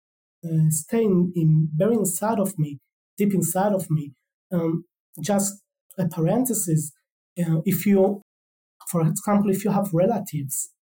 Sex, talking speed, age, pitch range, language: male, 135 wpm, 30-49, 165-195 Hz, English